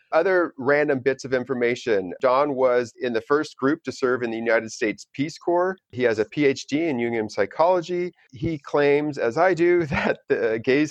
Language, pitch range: English, 110-145 Hz